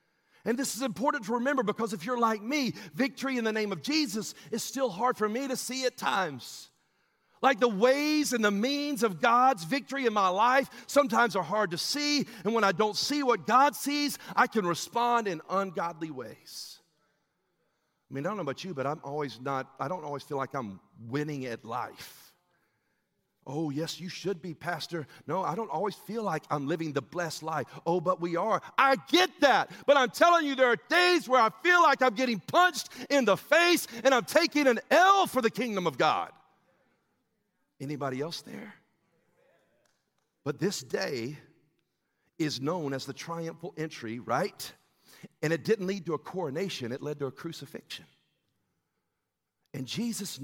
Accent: American